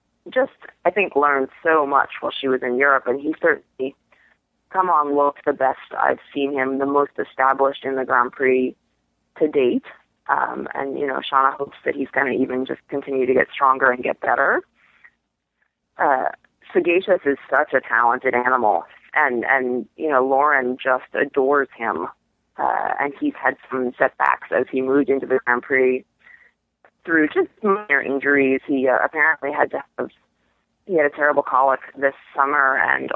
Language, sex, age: English, female, 30-49